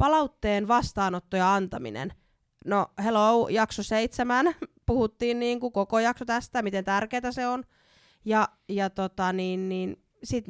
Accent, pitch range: native, 185-235 Hz